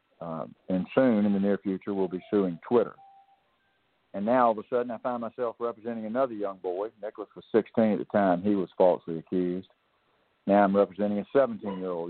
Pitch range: 95-115 Hz